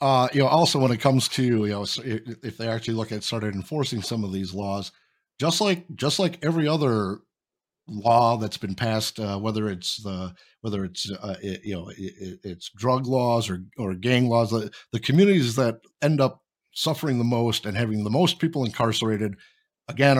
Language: English